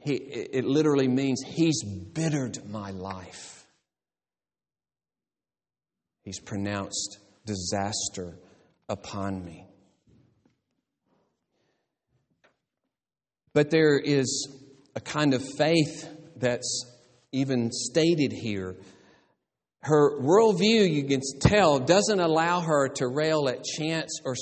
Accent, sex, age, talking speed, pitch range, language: American, male, 50-69, 90 wpm, 110-150 Hz, English